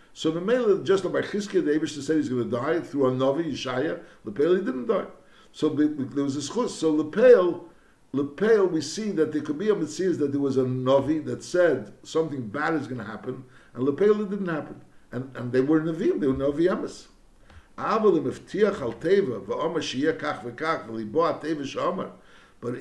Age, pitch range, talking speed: 60-79, 135-190 Hz, 165 wpm